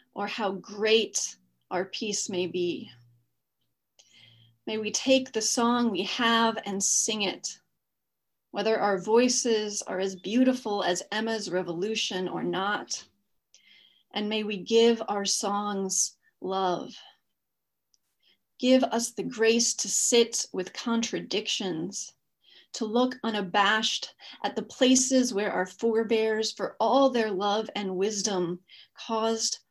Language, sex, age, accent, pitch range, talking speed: English, female, 30-49, American, 195-230 Hz, 120 wpm